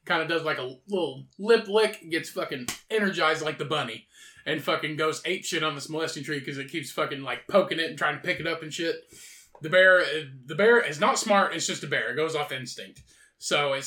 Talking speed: 240 wpm